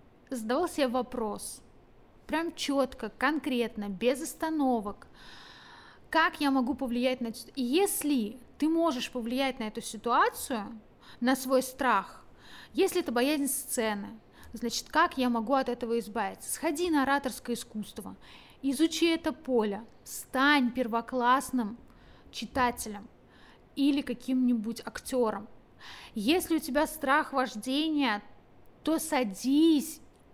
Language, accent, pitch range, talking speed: Russian, native, 230-275 Hz, 110 wpm